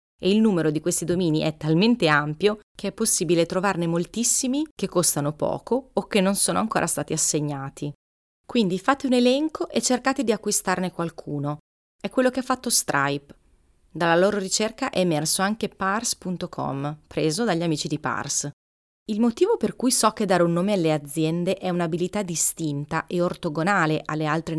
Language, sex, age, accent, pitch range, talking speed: Italian, female, 30-49, native, 155-205 Hz, 170 wpm